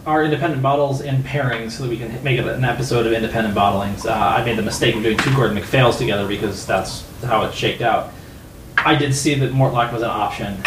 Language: English